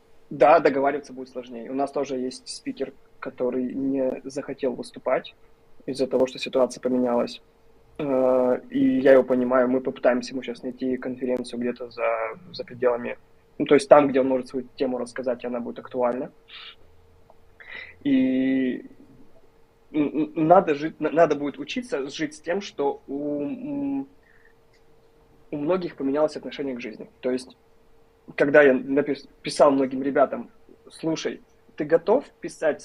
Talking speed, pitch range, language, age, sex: 135 wpm, 130-160 Hz, Russian, 20-39, male